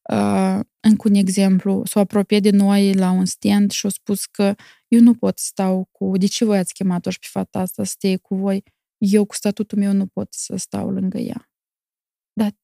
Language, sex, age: Romanian, female, 20-39